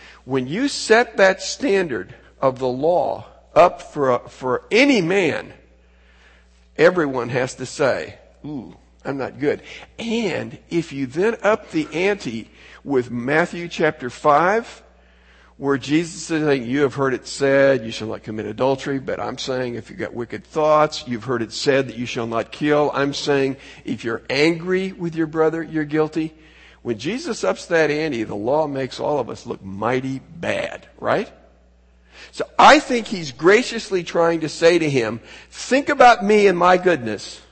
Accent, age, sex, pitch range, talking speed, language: American, 50-69, male, 120-185 Hz, 165 wpm, English